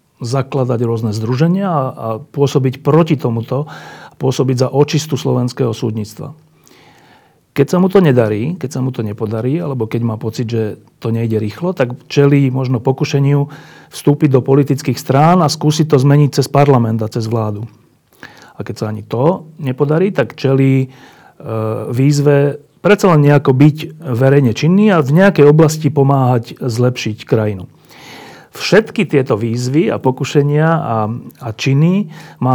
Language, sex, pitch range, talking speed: Slovak, male, 120-150 Hz, 150 wpm